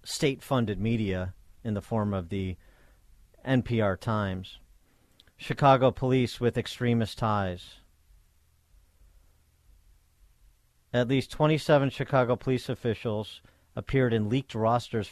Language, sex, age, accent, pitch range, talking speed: English, male, 40-59, American, 95-120 Hz, 95 wpm